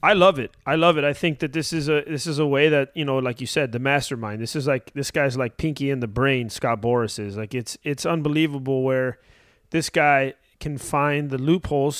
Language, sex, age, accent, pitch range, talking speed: English, male, 30-49, American, 115-155 Hz, 240 wpm